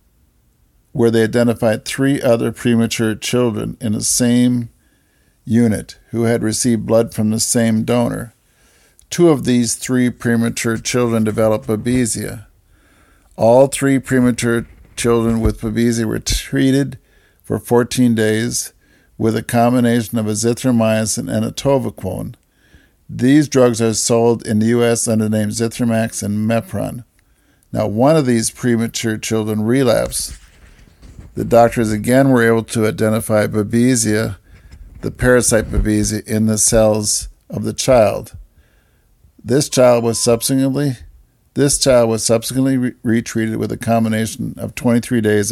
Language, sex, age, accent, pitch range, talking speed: English, male, 50-69, American, 110-120 Hz, 130 wpm